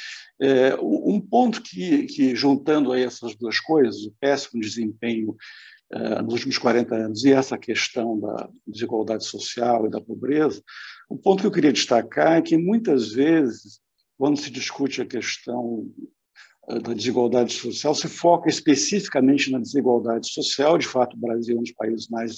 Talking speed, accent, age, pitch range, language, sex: 160 wpm, Brazilian, 60-79, 120-175 Hz, Portuguese, male